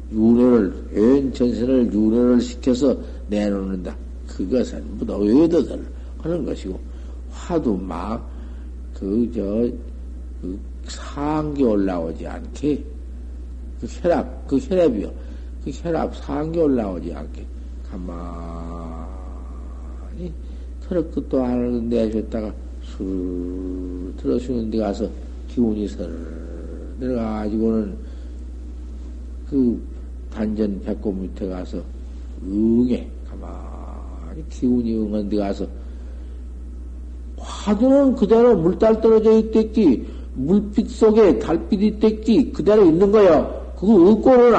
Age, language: 50-69, Korean